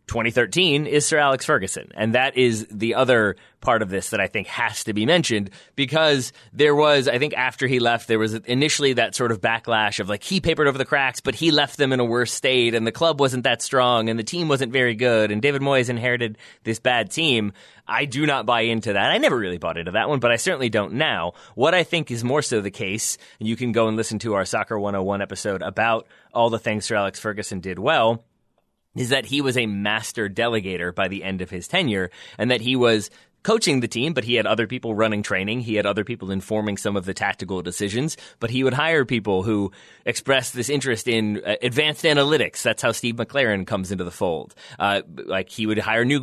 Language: English